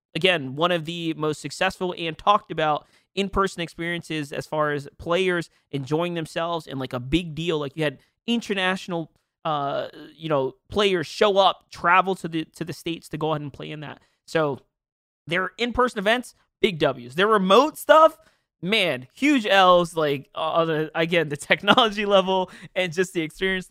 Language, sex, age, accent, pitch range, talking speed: English, male, 20-39, American, 150-190 Hz, 170 wpm